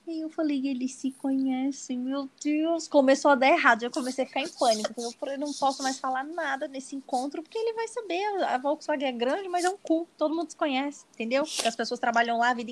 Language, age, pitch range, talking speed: Portuguese, 20-39, 215-280 Hz, 245 wpm